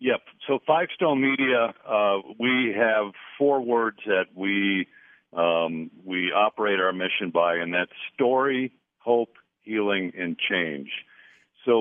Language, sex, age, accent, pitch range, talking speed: English, male, 60-79, American, 95-120 Hz, 130 wpm